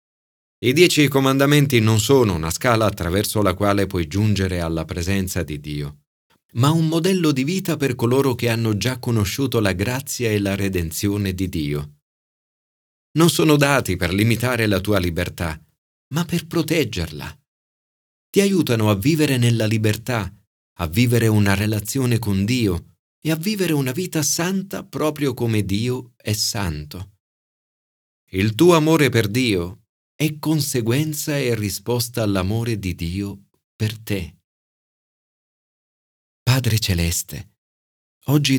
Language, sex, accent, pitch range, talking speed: Italian, male, native, 90-125 Hz, 130 wpm